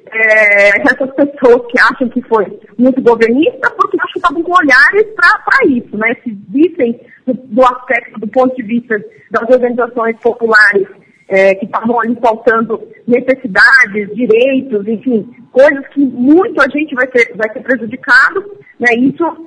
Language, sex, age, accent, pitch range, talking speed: Portuguese, female, 20-39, Brazilian, 215-280 Hz, 155 wpm